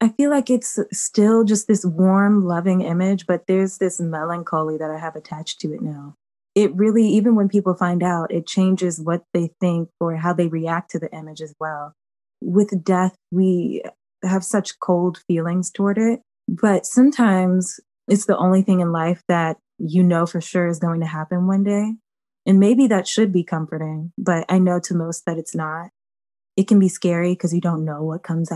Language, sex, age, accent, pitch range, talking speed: English, female, 20-39, American, 170-200 Hz, 200 wpm